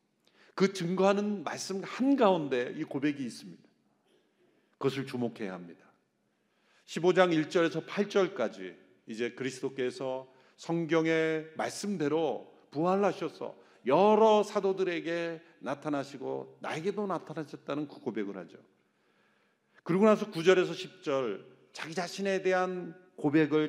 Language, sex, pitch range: Korean, male, 135-195 Hz